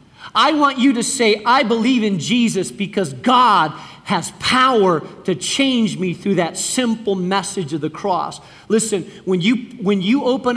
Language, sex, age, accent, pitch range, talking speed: English, male, 40-59, American, 190-235 Hz, 165 wpm